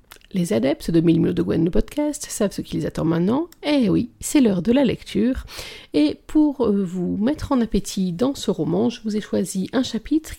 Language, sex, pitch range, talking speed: French, female, 190-260 Hz, 195 wpm